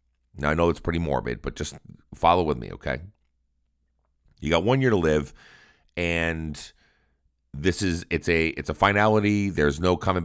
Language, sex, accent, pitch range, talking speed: English, male, American, 70-90 Hz, 170 wpm